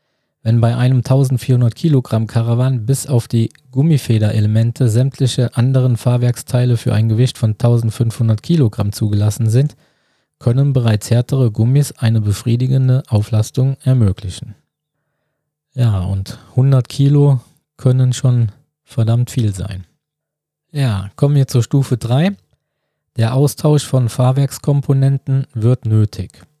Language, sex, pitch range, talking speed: German, male, 115-140 Hz, 115 wpm